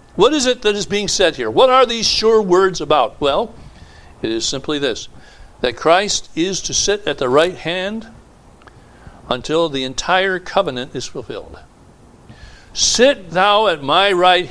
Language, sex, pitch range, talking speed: English, male, 115-185 Hz, 160 wpm